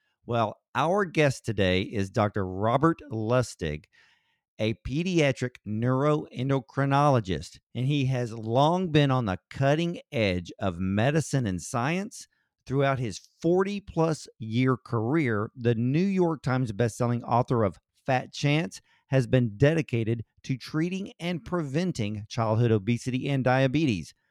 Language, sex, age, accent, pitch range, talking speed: English, male, 50-69, American, 110-155 Hz, 120 wpm